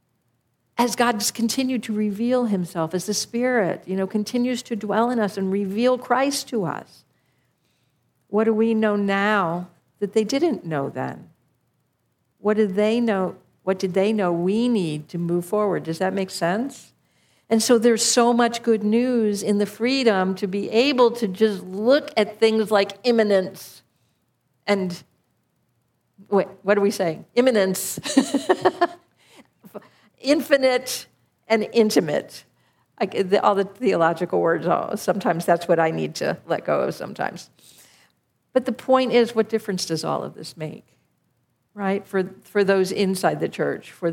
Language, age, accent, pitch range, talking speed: English, 60-79, American, 185-230 Hz, 150 wpm